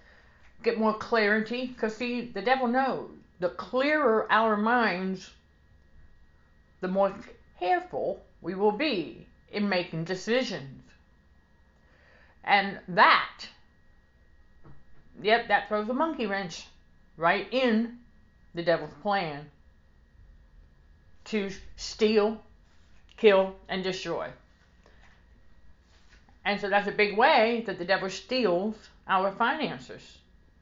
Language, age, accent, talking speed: English, 50-69, American, 100 wpm